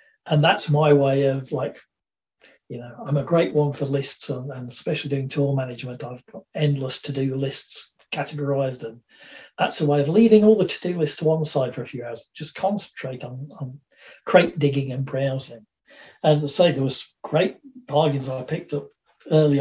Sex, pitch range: male, 135-155 Hz